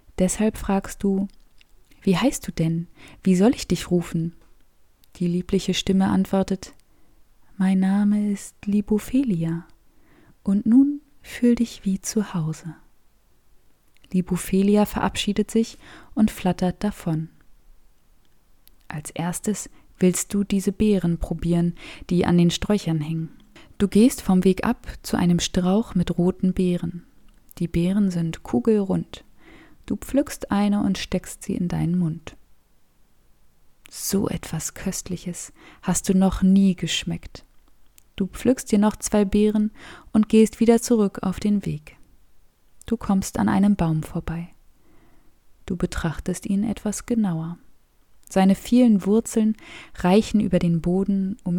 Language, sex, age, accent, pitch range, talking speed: German, female, 20-39, German, 170-210 Hz, 125 wpm